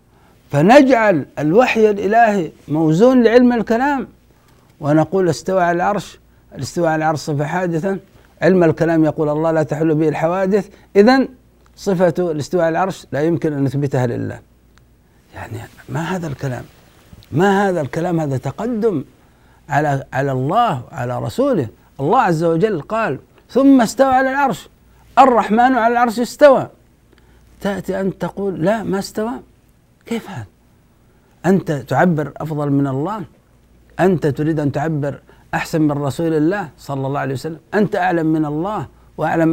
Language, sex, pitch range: Arabic, male, 145-200 Hz